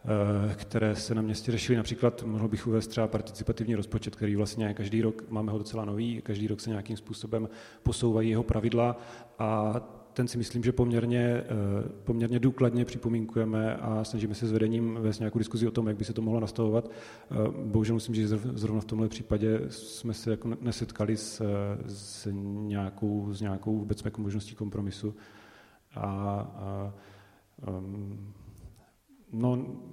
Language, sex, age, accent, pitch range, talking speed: Czech, male, 30-49, native, 105-115 Hz, 145 wpm